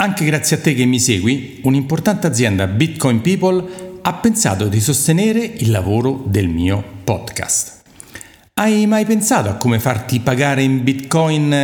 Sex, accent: male, native